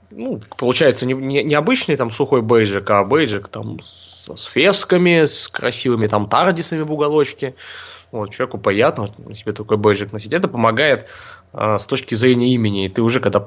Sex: male